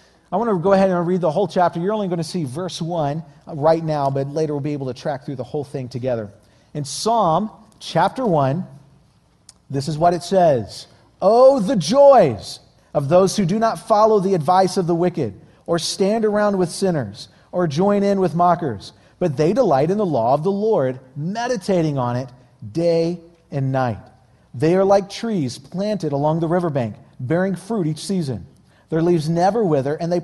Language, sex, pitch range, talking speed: English, male, 135-180 Hz, 195 wpm